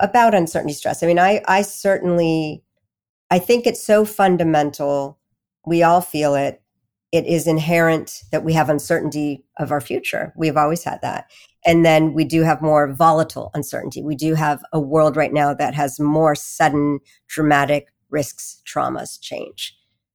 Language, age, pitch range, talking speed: English, 50-69, 145-175 Hz, 160 wpm